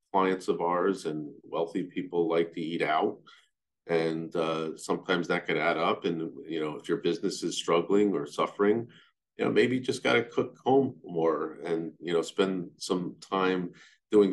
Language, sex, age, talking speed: English, male, 40-59, 185 wpm